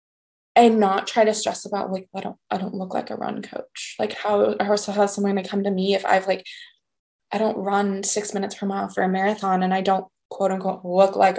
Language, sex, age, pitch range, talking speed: English, female, 20-39, 190-220 Hz, 235 wpm